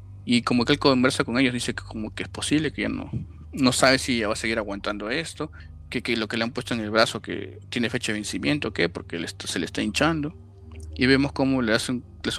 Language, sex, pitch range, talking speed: Spanish, male, 100-135 Hz, 270 wpm